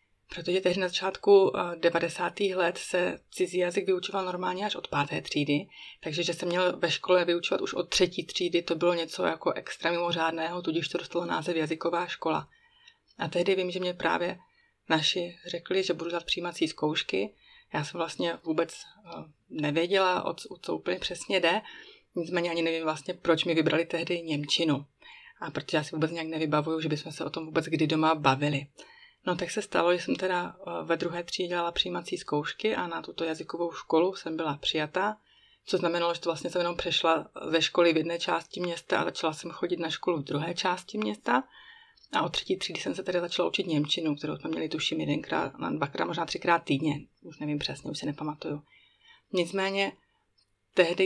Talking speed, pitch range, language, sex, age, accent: 185 wpm, 160-180 Hz, Czech, female, 30-49, native